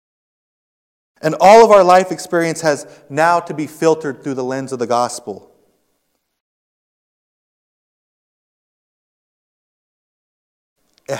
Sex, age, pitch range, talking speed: male, 30-49, 115-165 Hz, 95 wpm